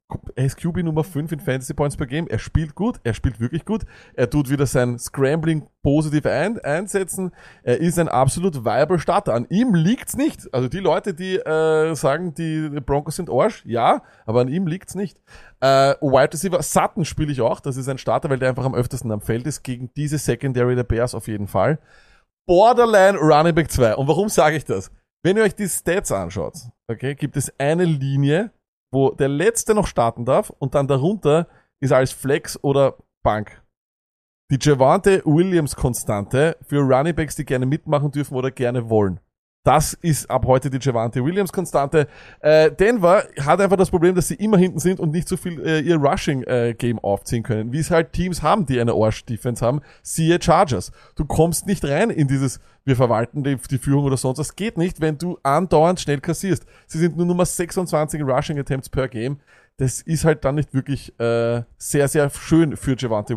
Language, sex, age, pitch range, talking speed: German, male, 30-49, 130-170 Hz, 195 wpm